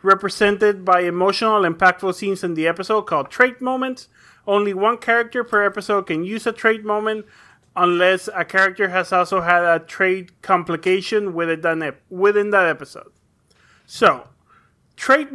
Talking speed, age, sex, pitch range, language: 135 wpm, 30-49, male, 180-215 Hz, English